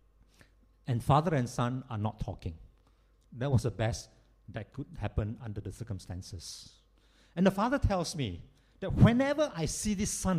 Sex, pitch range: male, 100-140 Hz